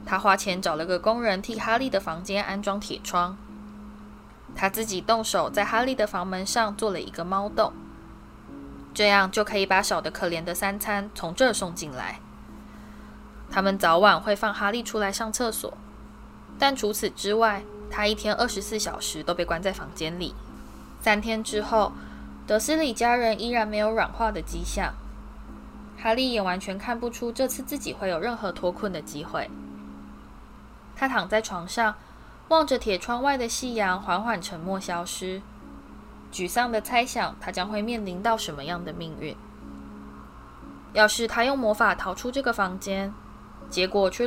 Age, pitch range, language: 10-29, 175-225 Hz, Chinese